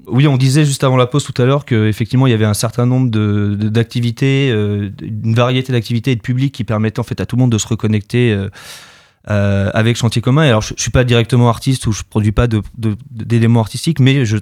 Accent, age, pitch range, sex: French, 20-39, 110-130 Hz, male